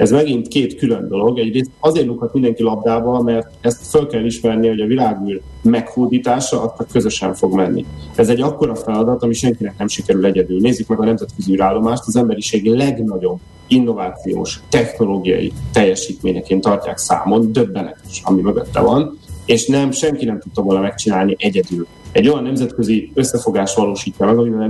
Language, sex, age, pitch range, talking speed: Hungarian, male, 30-49, 100-125 Hz, 155 wpm